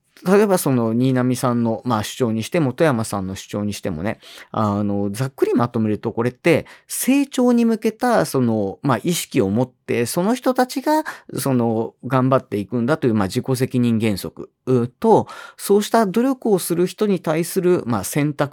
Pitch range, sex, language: 115-170 Hz, male, Japanese